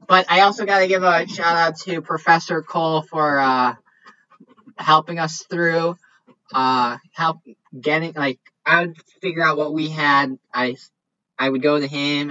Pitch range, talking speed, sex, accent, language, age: 130-170 Hz, 165 wpm, male, American, English, 10-29